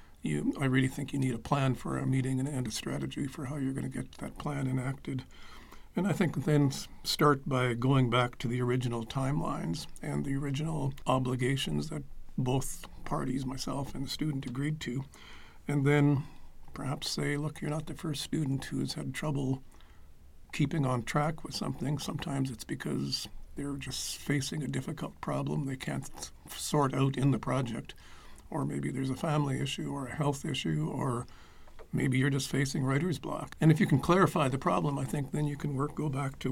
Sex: male